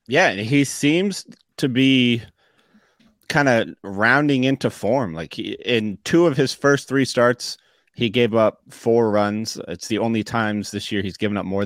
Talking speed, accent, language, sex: 175 wpm, American, English, male